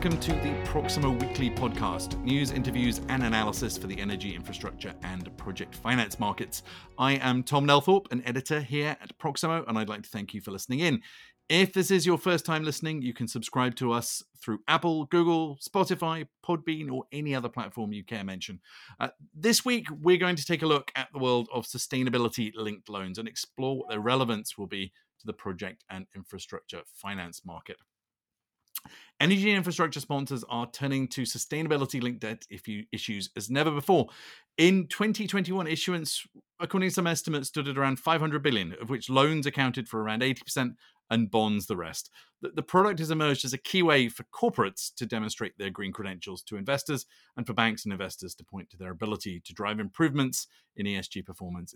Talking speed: 180 wpm